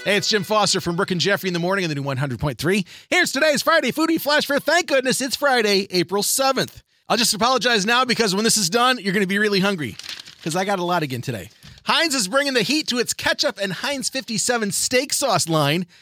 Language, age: English, 30-49